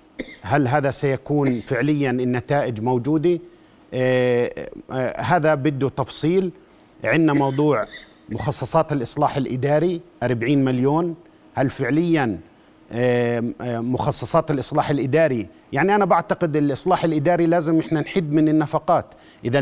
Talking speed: 110 wpm